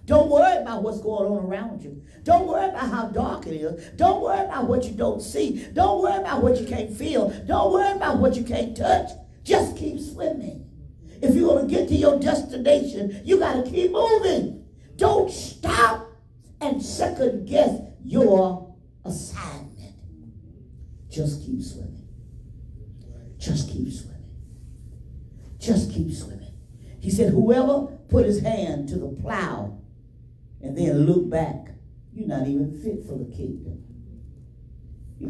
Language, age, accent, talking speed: English, 50-69, American, 150 wpm